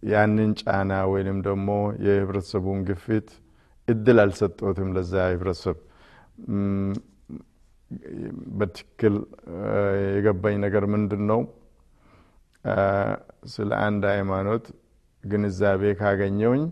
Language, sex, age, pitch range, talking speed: Amharic, male, 50-69, 100-105 Hz, 70 wpm